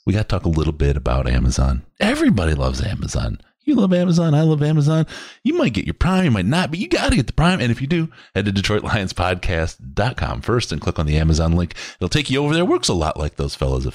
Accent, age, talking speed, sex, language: American, 30-49, 260 wpm, male, English